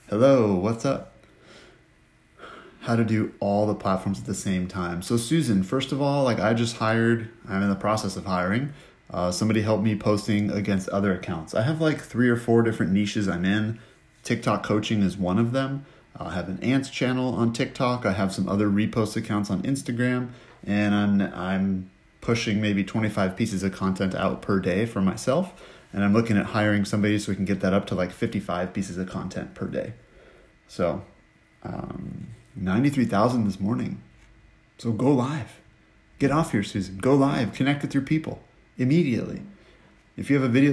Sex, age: male, 30-49